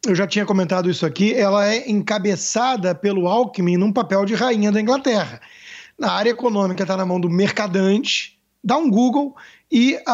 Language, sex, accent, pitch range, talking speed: Portuguese, male, Brazilian, 195-255 Hz, 180 wpm